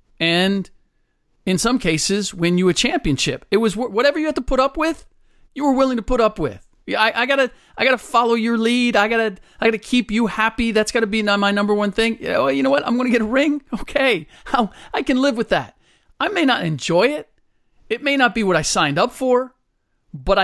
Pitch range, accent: 150-220 Hz, American